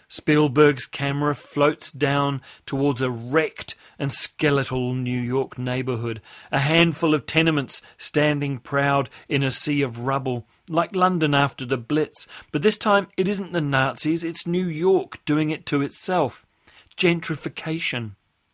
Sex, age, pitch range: male, 40-59, 130-160 Hz